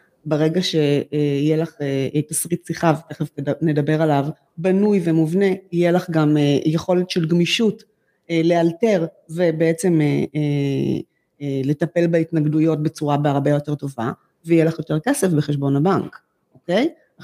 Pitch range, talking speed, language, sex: 160-235 Hz, 110 wpm, Hebrew, female